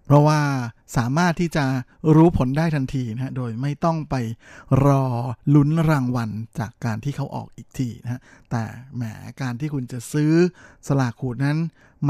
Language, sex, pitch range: Thai, male, 120-145 Hz